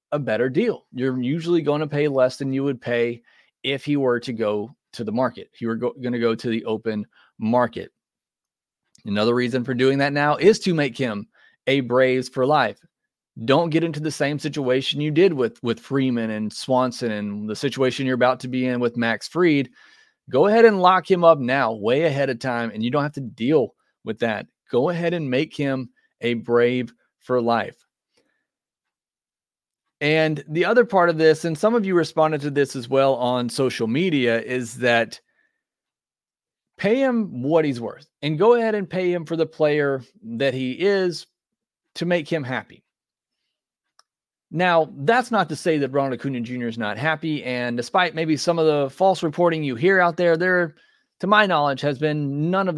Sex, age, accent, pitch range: male, 30-49, American, 125-165 Hz